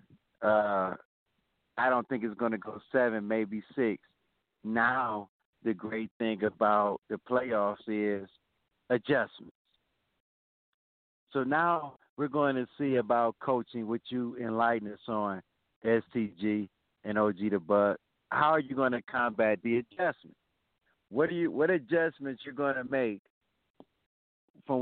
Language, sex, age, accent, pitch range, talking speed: English, male, 50-69, American, 110-150 Hz, 135 wpm